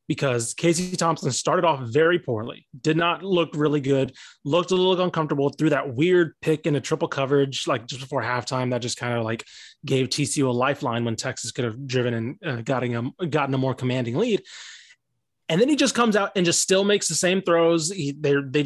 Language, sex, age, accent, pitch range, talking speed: English, male, 20-39, American, 125-160 Hz, 215 wpm